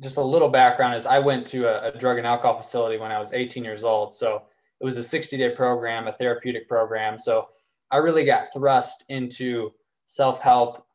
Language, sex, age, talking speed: English, male, 20-39, 195 wpm